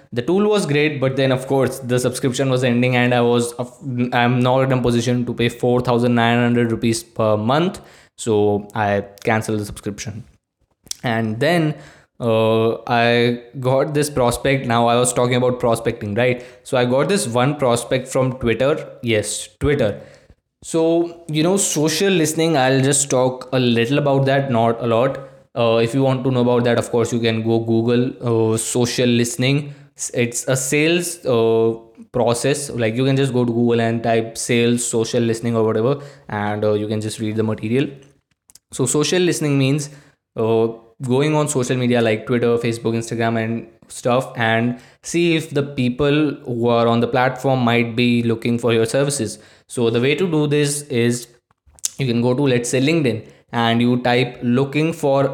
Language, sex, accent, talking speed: Hindi, male, native, 185 wpm